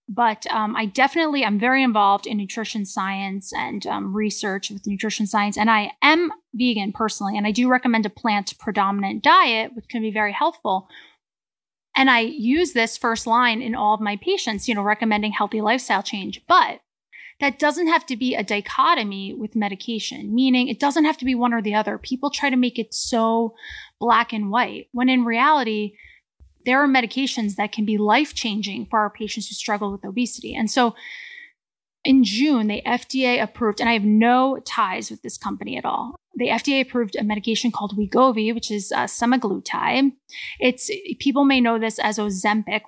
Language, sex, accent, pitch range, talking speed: English, female, American, 210-255 Hz, 185 wpm